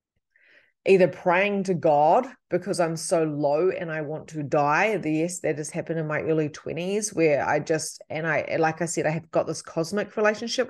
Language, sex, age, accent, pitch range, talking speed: English, female, 30-49, Australian, 165-200 Hz, 195 wpm